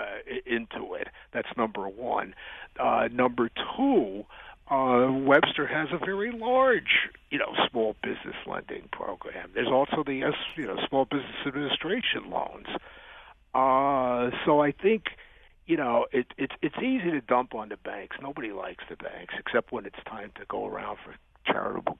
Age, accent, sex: 60-79, American, male